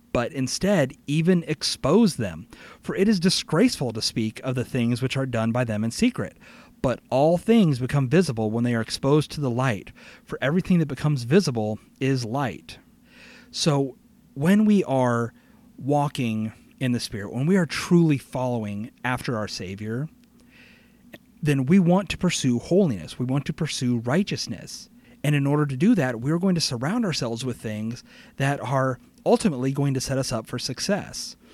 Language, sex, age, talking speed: English, male, 30-49, 170 wpm